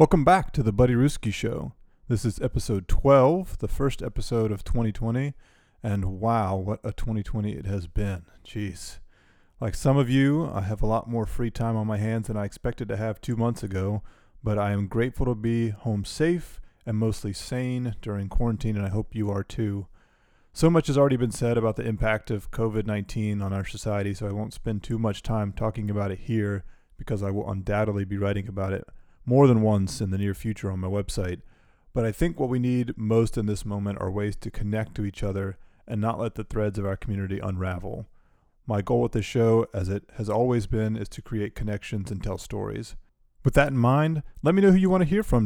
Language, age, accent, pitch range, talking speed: English, 30-49, American, 100-120 Hz, 220 wpm